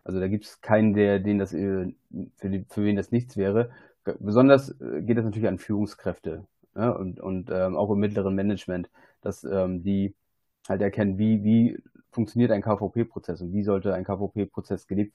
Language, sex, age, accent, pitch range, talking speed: German, male, 30-49, German, 95-110 Hz, 180 wpm